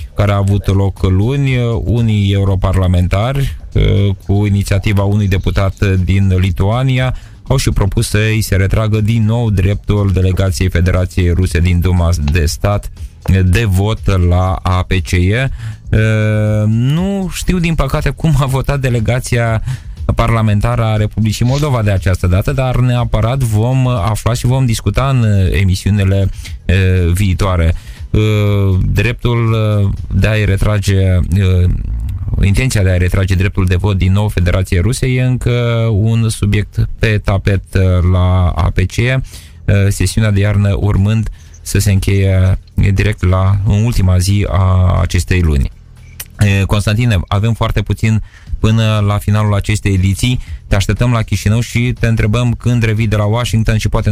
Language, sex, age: Romanian, male, 20-39